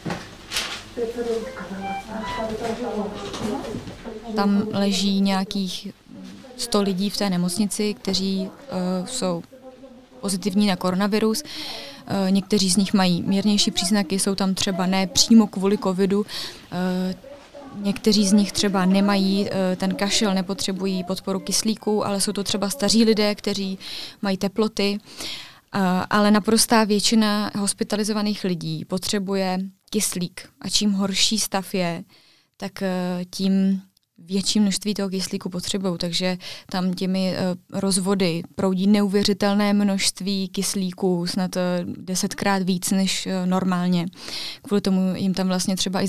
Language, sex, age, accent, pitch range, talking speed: Czech, female, 20-39, native, 185-205 Hz, 115 wpm